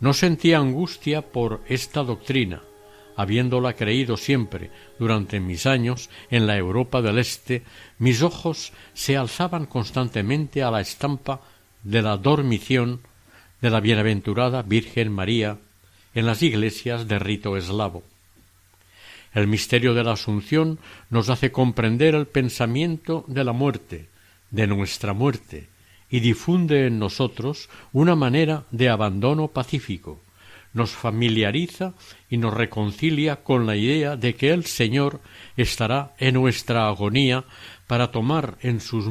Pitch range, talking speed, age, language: 105-135 Hz, 130 wpm, 60-79, Spanish